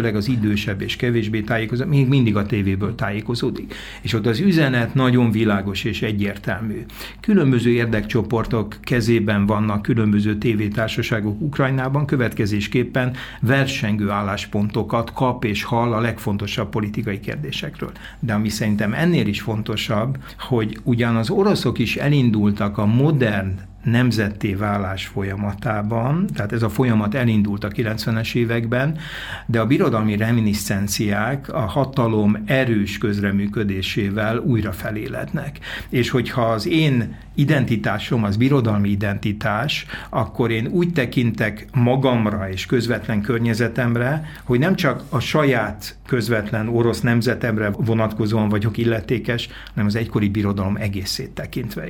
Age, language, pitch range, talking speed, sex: 60-79, Hungarian, 105-130 Hz, 120 wpm, male